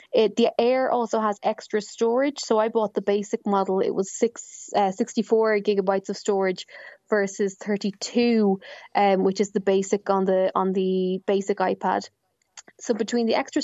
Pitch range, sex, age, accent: 195-225 Hz, female, 20-39, Irish